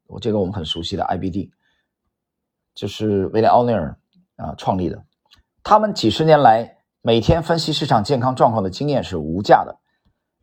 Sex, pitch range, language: male, 105-155 Hz, Chinese